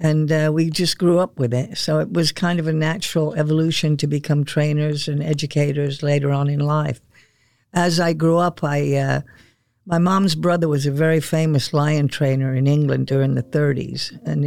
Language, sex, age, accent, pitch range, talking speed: English, female, 60-79, American, 140-160 Hz, 190 wpm